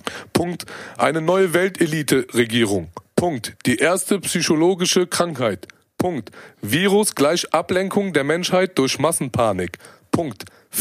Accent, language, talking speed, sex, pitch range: German, German, 100 wpm, male, 135-180 Hz